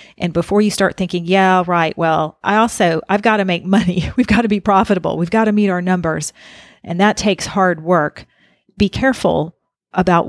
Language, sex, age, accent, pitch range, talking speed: English, female, 40-59, American, 160-190 Hz, 200 wpm